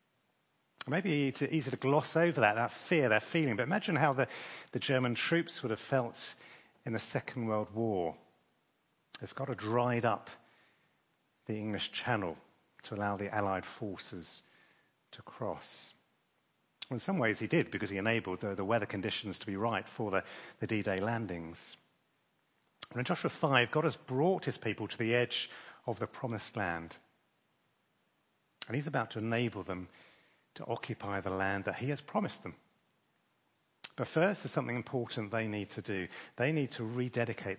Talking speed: 165 wpm